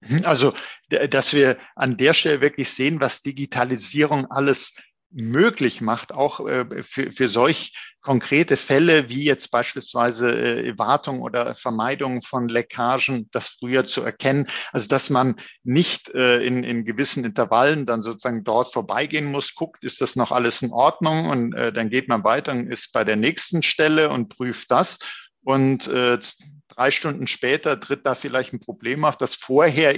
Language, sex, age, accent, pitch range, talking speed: German, male, 50-69, German, 125-150 Hz, 165 wpm